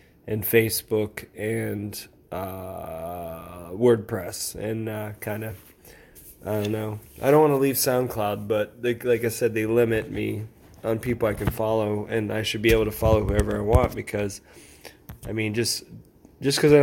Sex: male